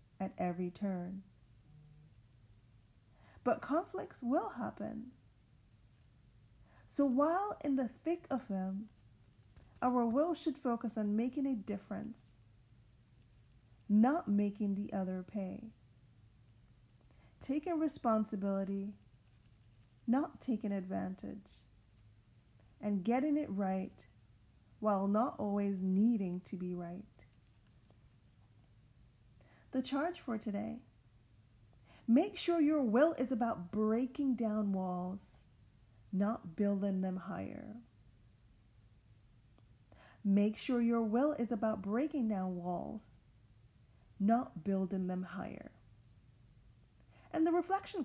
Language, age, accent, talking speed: English, 40-59, American, 95 wpm